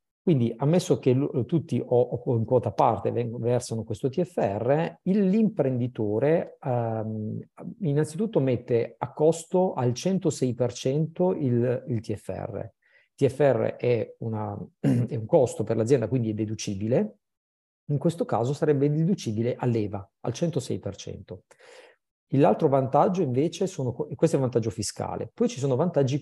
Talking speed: 125 wpm